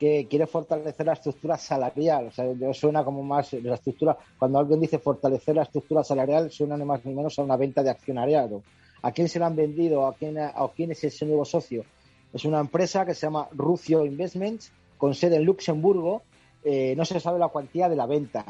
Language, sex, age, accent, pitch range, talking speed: Spanish, male, 40-59, Spanish, 135-160 Hz, 210 wpm